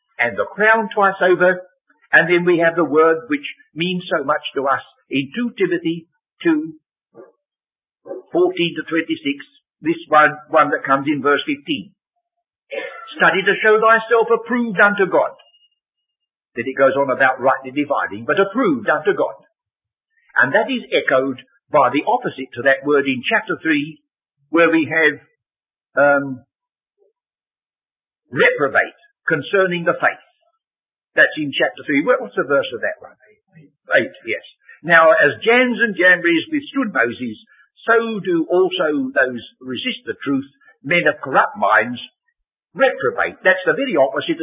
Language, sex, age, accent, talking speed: English, male, 60-79, British, 140 wpm